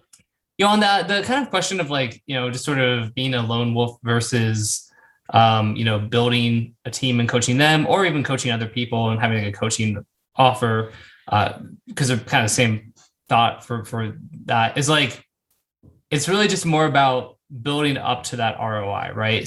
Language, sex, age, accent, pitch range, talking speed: English, male, 20-39, American, 115-135 Hz, 190 wpm